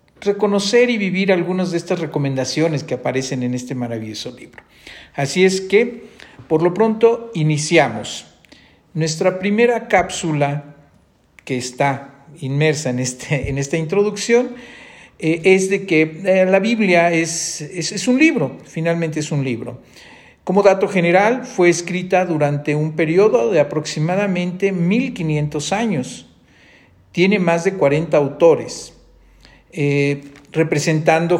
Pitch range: 150-185 Hz